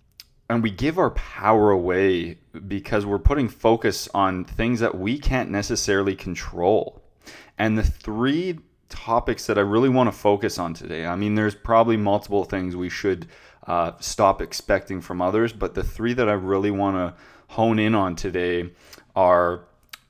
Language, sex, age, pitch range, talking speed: English, male, 20-39, 90-115 Hz, 165 wpm